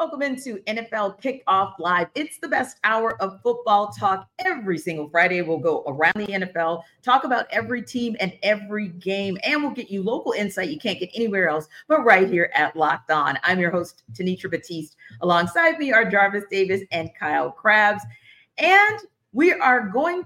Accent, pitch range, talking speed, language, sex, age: American, 160-205 Hz, 180 wpm, English, female, 40-59